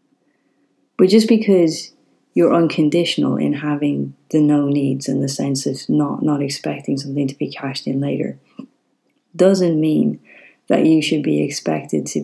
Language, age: English, 30-49